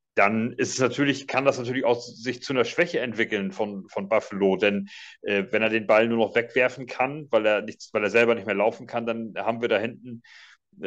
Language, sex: German, male